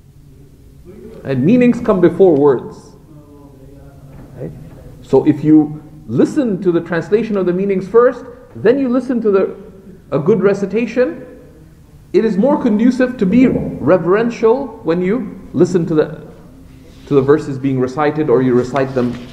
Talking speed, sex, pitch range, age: 145 wpm, male, 135-210 Hz, 50-69